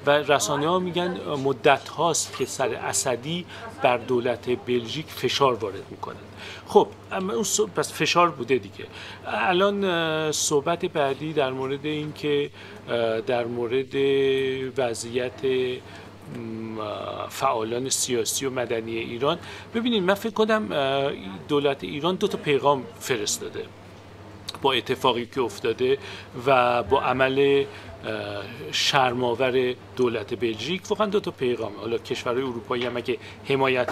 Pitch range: 120-165 Hz